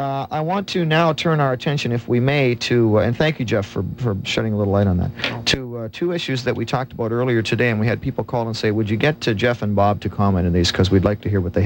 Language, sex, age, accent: English, male, 40-59, American